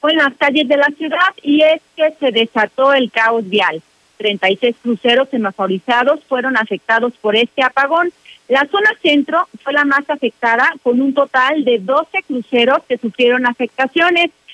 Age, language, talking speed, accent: 40-59, Spanish, 170 wpm, Mexican